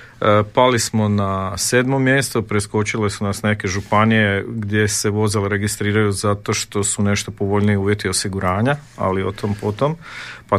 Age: 40-59